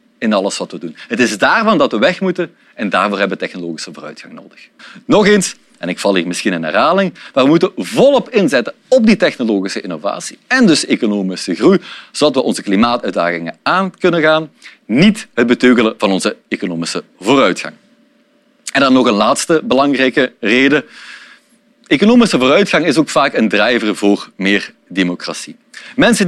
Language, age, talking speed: Dutch, 40-59, 165 wpm